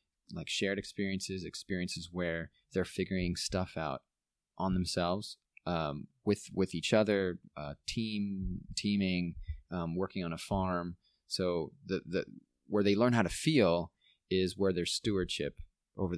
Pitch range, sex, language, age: 85-100 Hz, male, English, 30-49